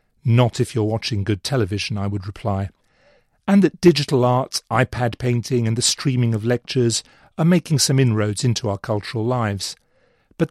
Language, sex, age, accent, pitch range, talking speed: English, male, 40-59, British, 110-135 Hz, 165 wpm